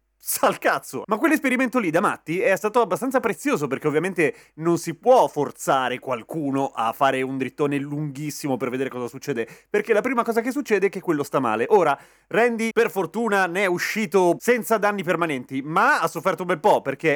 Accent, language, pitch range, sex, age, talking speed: native, Italian, 160-230 Hz, male, 30-49, 190 wpm